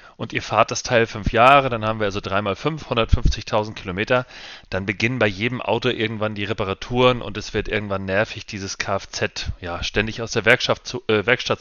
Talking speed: 190 wpm